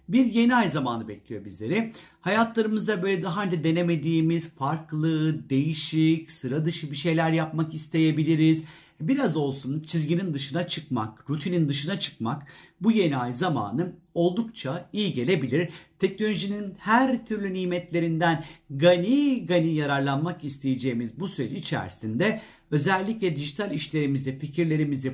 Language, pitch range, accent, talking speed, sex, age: Turkish, 140-180 Hz, native, 120 wpm, male, 50-69